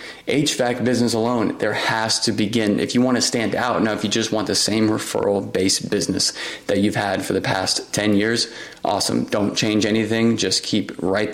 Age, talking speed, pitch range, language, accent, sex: 20-39, 195 wpm, 105-115 Hz, English, American, male